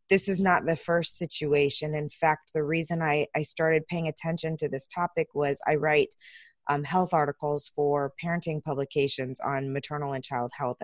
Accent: American